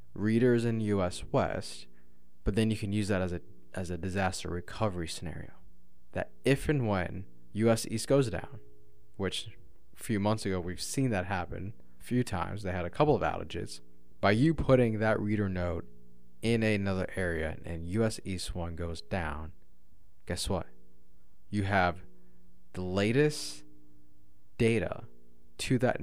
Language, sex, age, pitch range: English, male, 20-39, 85-105 Hz